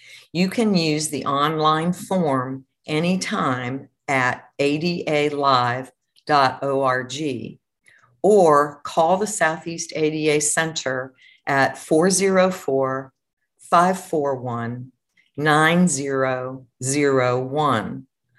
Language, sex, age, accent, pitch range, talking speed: English, female, 50-69, American, 135-170 Hz, 60 wpm